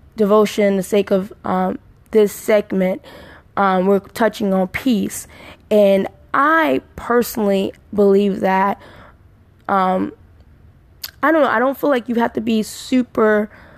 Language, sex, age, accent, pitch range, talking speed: English, female, 10-29, American, 200-235 Hz, 130 wpm